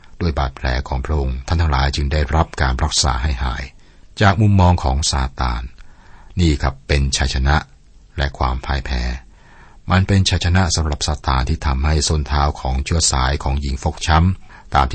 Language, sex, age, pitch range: Thai, male, 60-79, 70-85 Hz